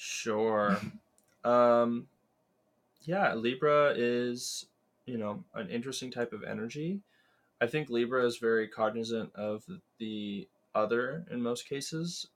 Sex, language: male, English